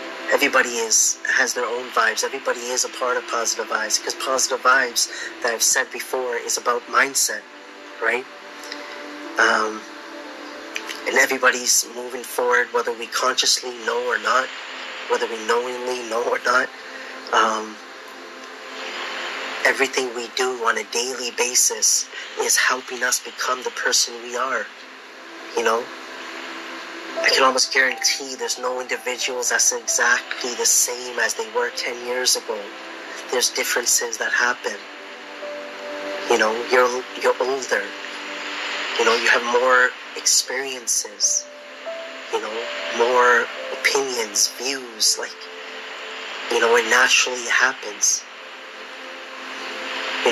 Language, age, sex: English, 30-49, male